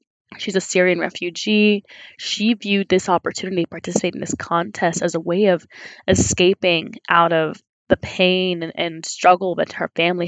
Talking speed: 165 wpm